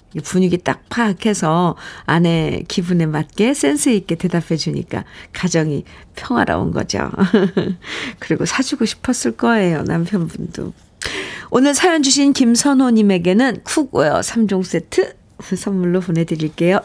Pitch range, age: 180-250 Hz, 50-69